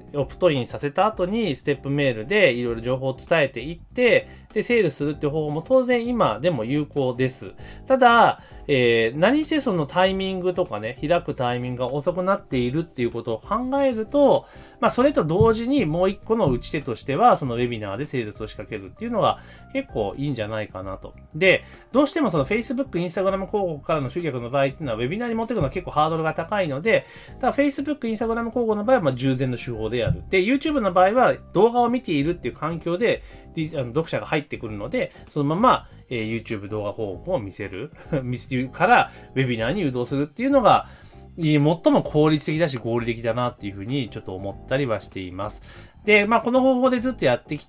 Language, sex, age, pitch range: Japanese, male, 30-49, 120-195 Hz